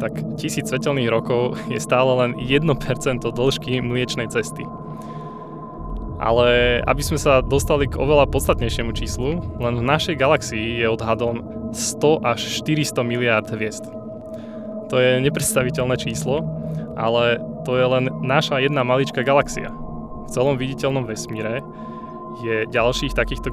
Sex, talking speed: male, 130 wpm